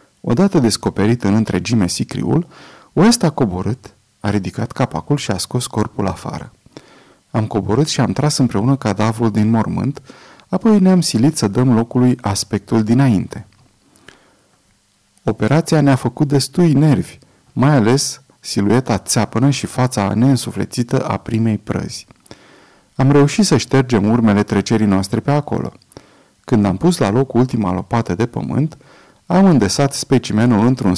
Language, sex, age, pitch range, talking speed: Romanian, male, 30-49, 105-140 Hz, 135 wpm